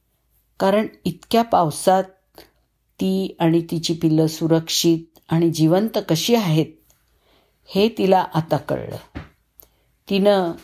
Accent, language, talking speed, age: native, Marathi, 95 wpm, 50-69